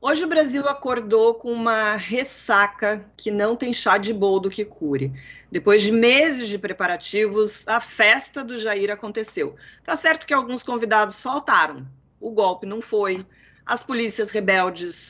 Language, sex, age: Portuguese, female, 30-49